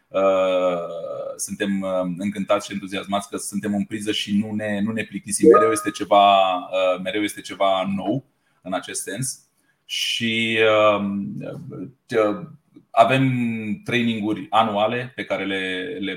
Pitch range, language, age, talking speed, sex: 95-110 Hz, Romanian, 20-39, 135 wpm, male